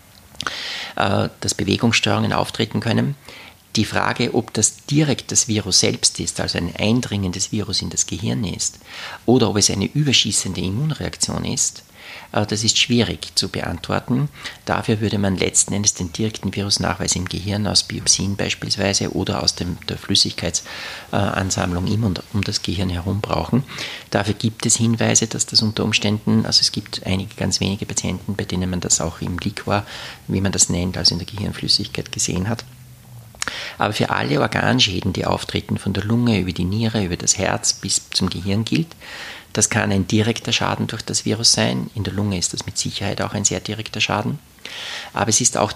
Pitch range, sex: 95-115 Hz, male